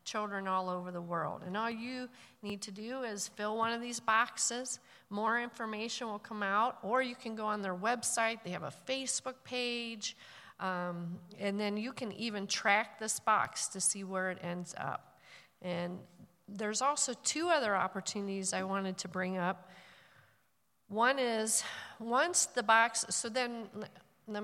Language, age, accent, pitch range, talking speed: English, 40-59, American, 185-230 Hz, 165 wpm